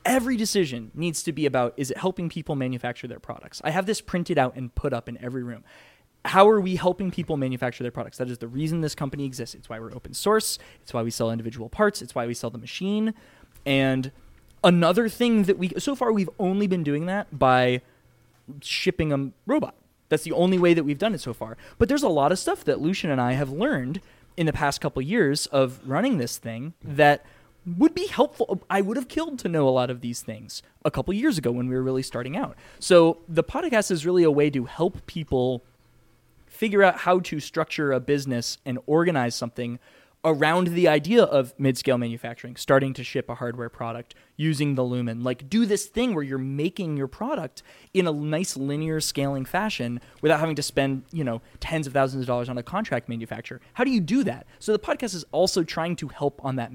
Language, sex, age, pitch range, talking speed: English, male, 20-39, 125-180 Hz, 220 wpm